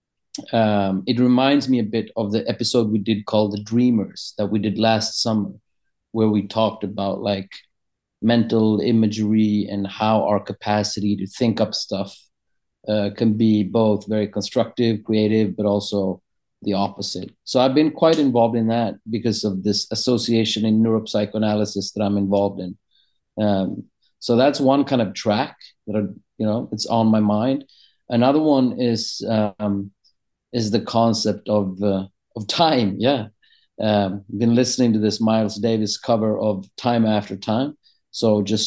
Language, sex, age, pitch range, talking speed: English, male, 30-49, 100-115 Hz, 160 wpm